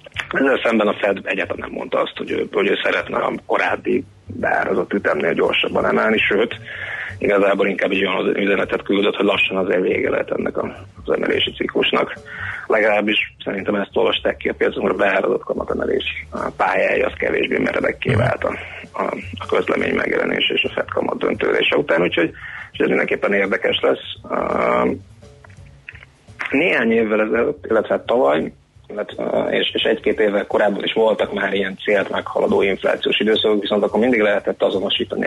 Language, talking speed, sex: Hungarian, 155 wpm, male